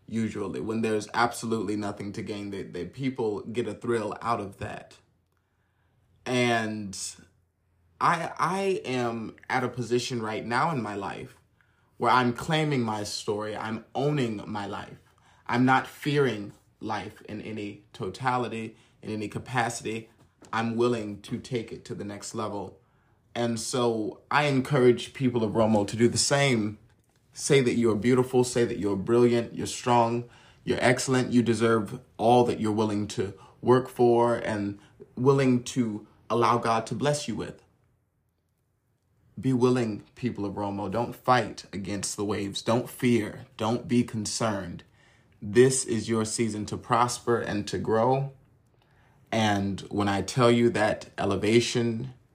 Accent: American